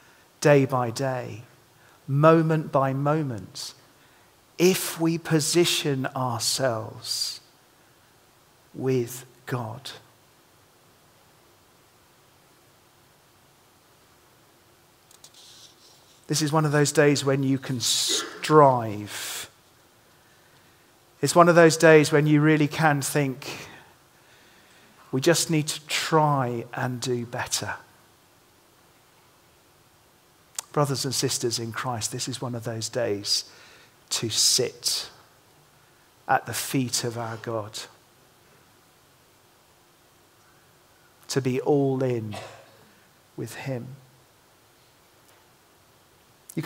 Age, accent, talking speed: 40-59, British, 85 wpm